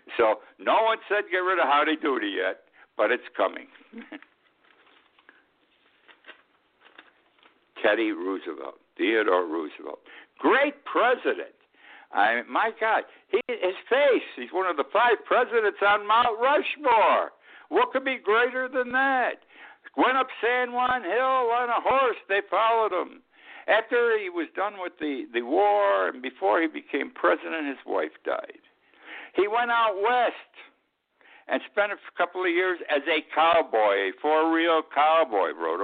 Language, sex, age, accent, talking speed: English, male, 60-79, American, 140 wpm